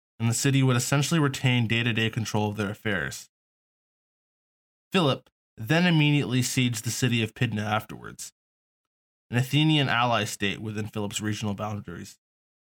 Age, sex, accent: 20-39, male, American